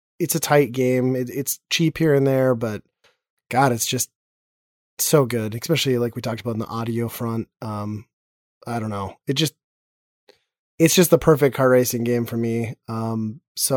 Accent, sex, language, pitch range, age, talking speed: American, male, English, 115-140 Hz, 20-39, 180 wpm